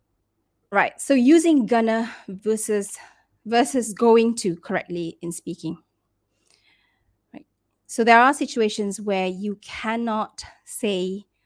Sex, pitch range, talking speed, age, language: female, 180-230 Hz, 105 wpm, 30-49, English